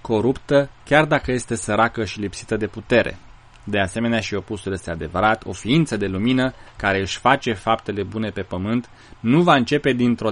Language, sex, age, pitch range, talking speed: Romanian, male, 20-39, 105-120 Hz, 175 wpm